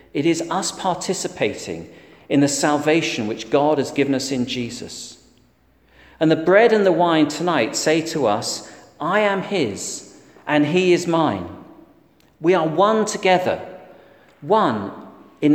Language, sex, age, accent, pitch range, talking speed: English, male, 40-59, British, 135-185 Hz, 145 wpm